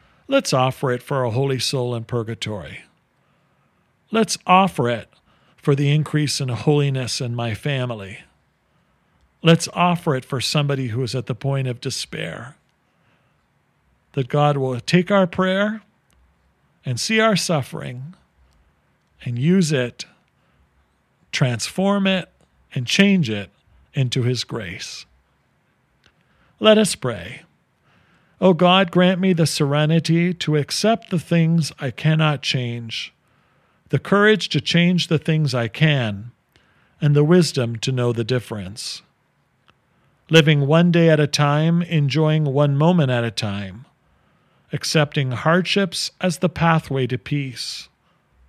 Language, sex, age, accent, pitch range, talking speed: English, male, 50-69, American, 125-170 Hz, 125 wpm